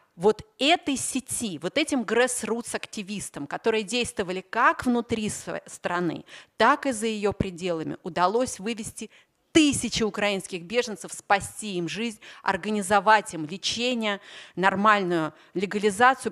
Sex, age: female, 30-49